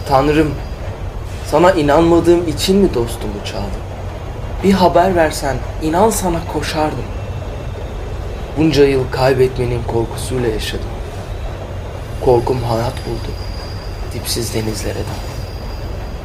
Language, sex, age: Turkish, male, 30-49